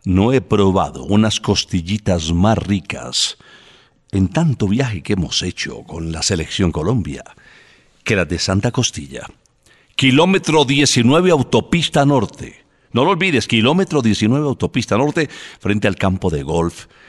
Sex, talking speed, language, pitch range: male, 135 wpm, Spanish, 95-145 Hz